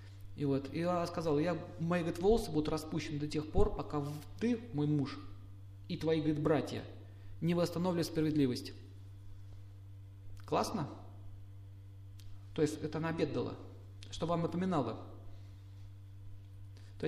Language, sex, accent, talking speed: Russian, male, native, 125 wpm